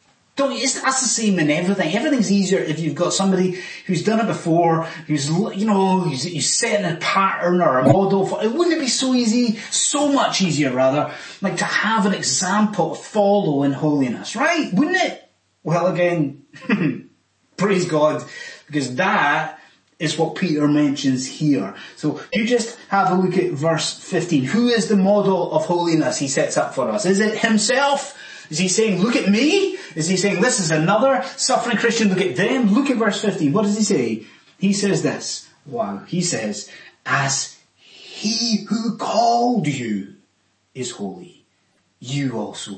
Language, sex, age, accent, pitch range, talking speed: English, male, 20-39, British, 165-250 Hz, 175 wpm